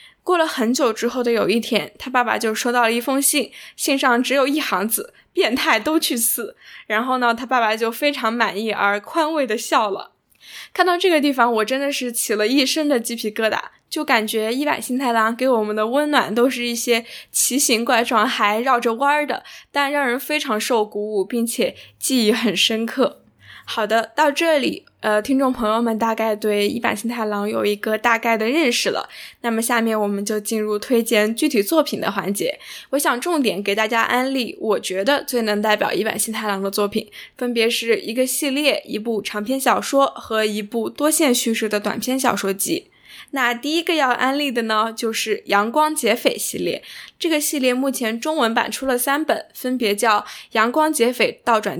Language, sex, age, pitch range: Chinese, female, 10-29, 215-270 Hz